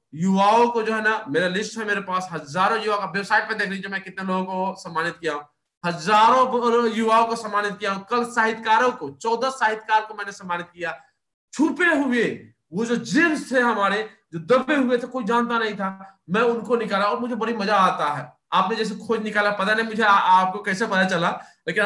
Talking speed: 165 wpm